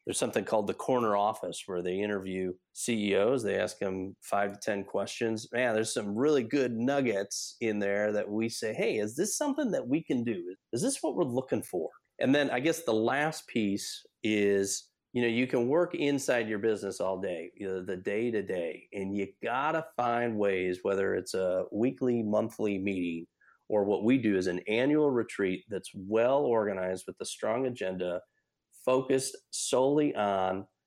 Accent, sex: American, male